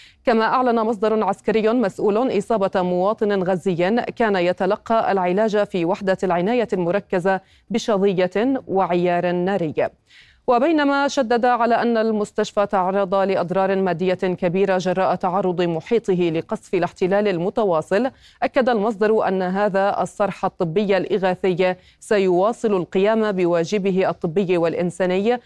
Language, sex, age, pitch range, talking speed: Arabic, female, 30-49, 180-215 Hz, 105 wpm